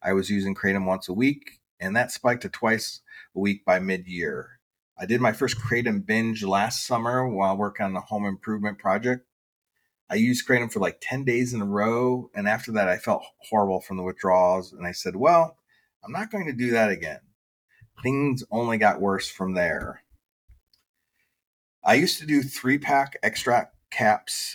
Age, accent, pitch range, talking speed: 30-49, American, 100-125 Hz, 180 wpm